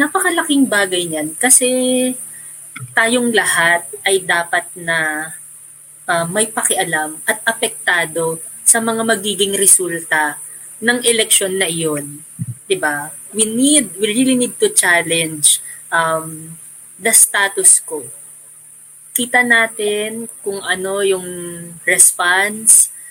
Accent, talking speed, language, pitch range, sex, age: native, 105 wpm, Filipino, 160-210 Hz, female, 20-39